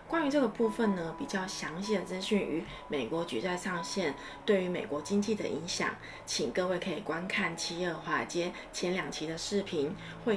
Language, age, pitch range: Chinese, 20-39, 170-210 Hz